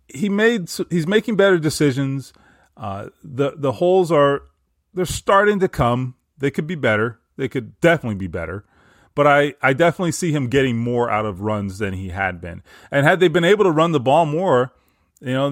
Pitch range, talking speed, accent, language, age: 110-155 Hz, 195 wpm, American, English, 30-49